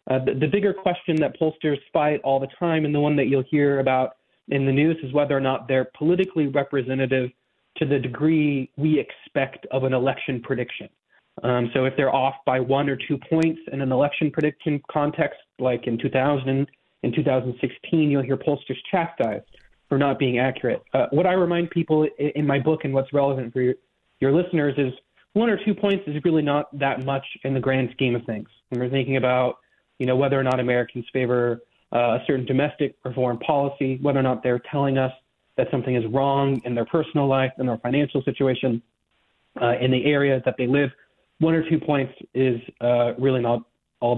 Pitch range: 130-150 Hz